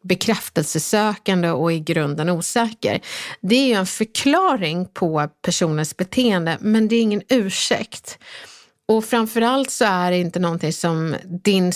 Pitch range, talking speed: 175-230 Hz, 140 wpm